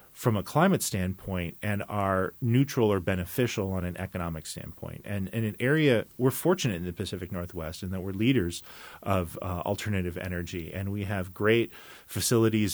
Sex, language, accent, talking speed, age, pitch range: male, English, American, 170 wpm, 30-49, 90-110 Hz